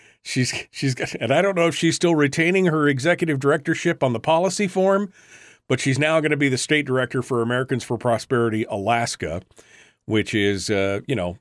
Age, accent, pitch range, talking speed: 40-59, American, 100-135 Hz, 190 wpm